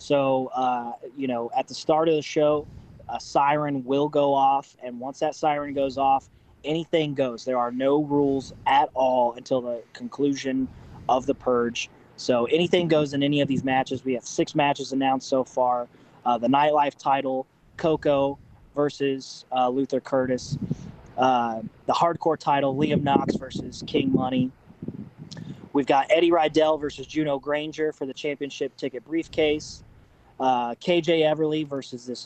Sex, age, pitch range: male, 20-39, 130-150 Hz